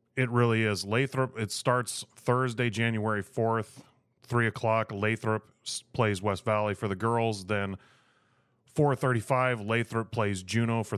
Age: 30-49